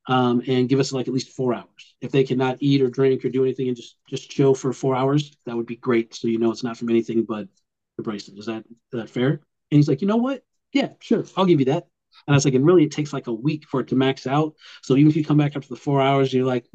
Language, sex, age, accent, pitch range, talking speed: English, male, 40-59, American, 125-150 Hz, 300 wpm